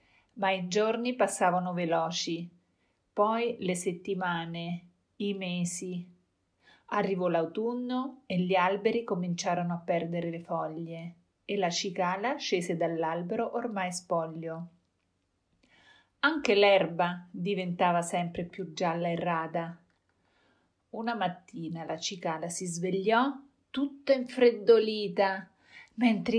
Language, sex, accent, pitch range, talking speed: Italian, female, native, 170-210 Hz, 100 wpm